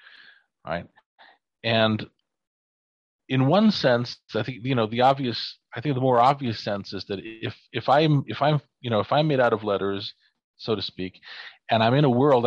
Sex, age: male, 40-59